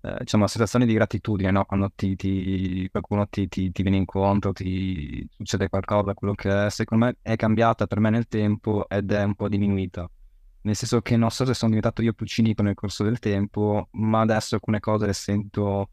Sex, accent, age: male, native, 20-39